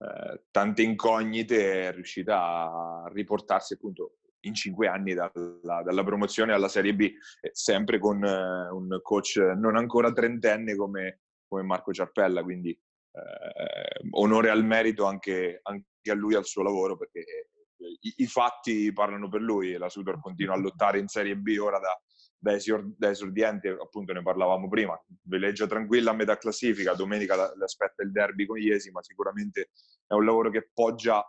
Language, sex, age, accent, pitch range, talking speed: Italian, male, 20-39, native, 95-115 Hz, 155 wpm